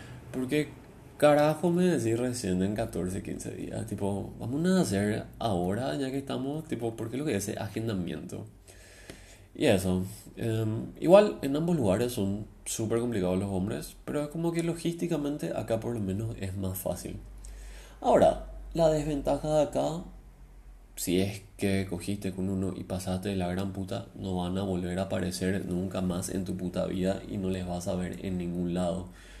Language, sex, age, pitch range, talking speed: Spanish, male, 20-39, 95-135 Hz, 180 wpm